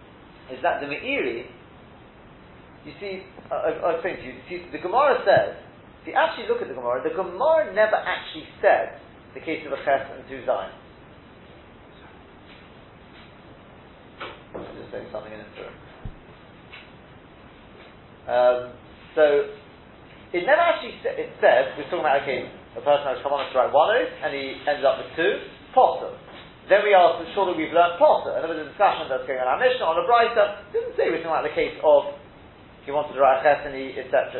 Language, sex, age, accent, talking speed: English, male, 40-59, British, 185 wpm